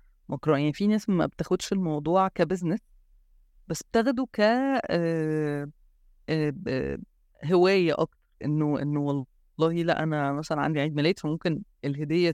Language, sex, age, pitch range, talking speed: Arabic, female, 20-39, 145-190 Hz, 110 wpm